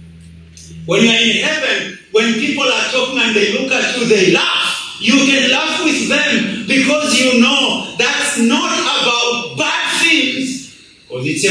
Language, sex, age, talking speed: English, male, 50-69, 155 wpm